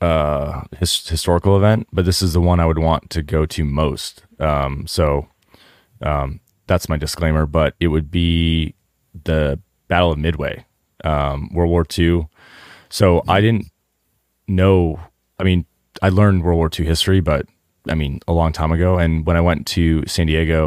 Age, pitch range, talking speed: 30-49, 75-90 Hz, 175 wpm